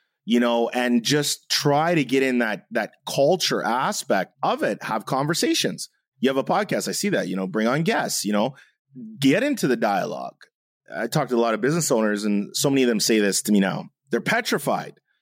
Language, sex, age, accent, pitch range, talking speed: English, male, 30-49, American, 115-145 Hz, 215 wpm